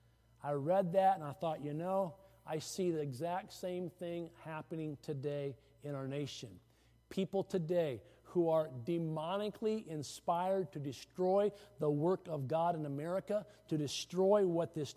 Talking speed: 150 wpm